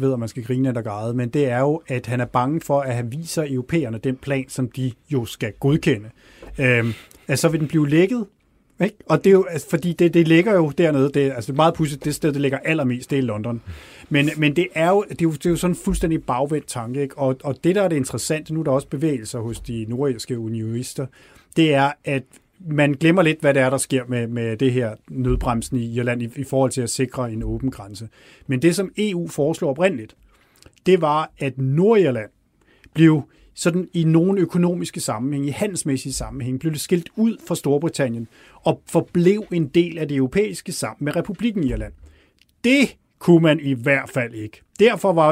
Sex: male